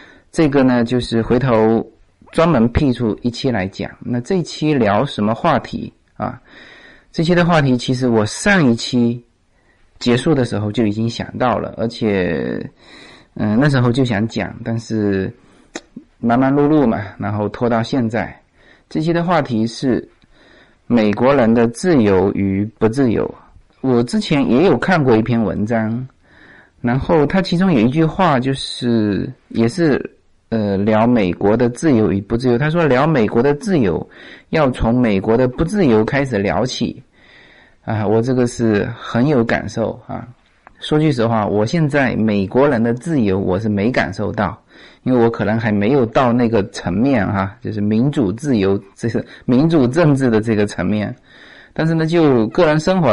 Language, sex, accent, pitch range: Chinese, male, native, 105-130 Hz